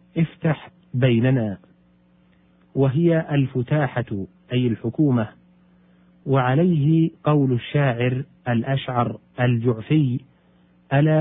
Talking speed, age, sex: 65 wpm, 50-69, male